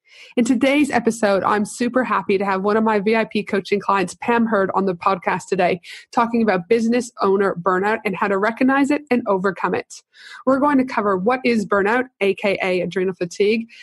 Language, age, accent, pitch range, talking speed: English, 30-49, American, 200-245 Hz, 185 wpm